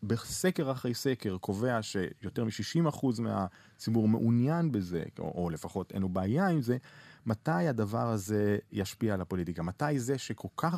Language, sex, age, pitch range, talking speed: Hebrew, male, 30-49, 105-135 Hz, 150 wpm